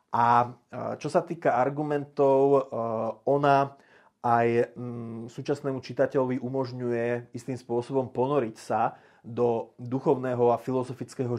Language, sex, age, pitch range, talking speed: Slovak, male, 30-49, 120-135 Hz, 95 wpm